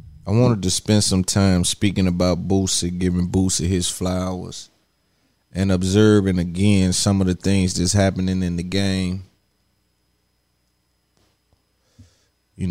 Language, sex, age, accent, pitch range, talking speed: English, male, 30-49, American, 90-105 Hz, 125 wpm